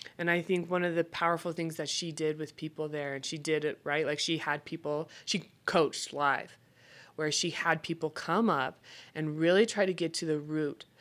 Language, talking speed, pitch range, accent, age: English, 220 wpm, 145-165 Hz, American, 20-39